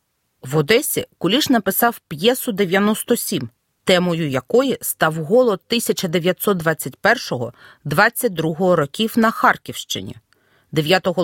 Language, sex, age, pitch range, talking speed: Ukrainian, female, 40-59, 175-255 Hz, 80 wpm